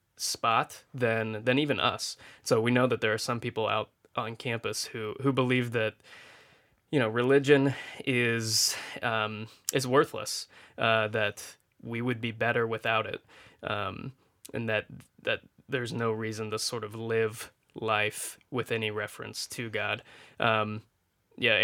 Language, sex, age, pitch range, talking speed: English, male, 20-39, 110-125 Hz, 150 wpm